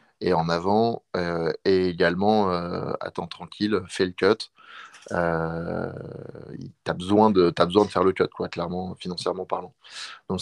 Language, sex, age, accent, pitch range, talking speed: French, male, 20-39, French, 90-100 Hz, 150 wpm